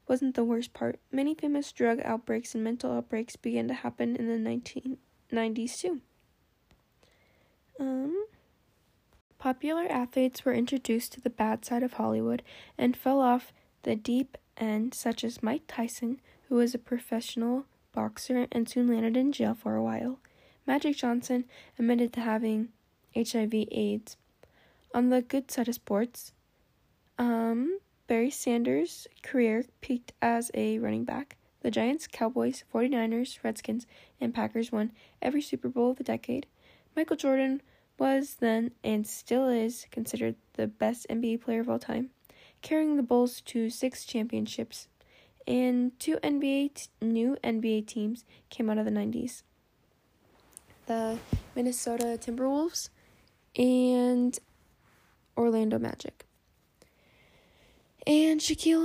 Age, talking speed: 10-29, 130 wpm